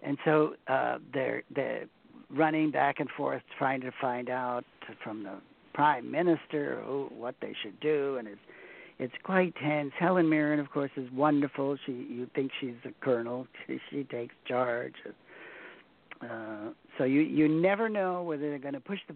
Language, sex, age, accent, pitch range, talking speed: English, male, 60-79, American, 130-160 Hz, 170 wpm